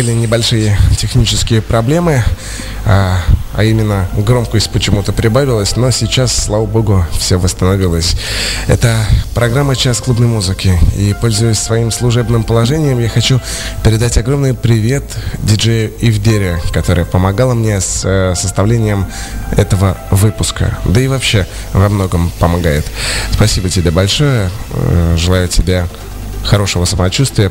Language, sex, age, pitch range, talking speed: Russian, male, 20-39, 95-115 Hz, 120 wpm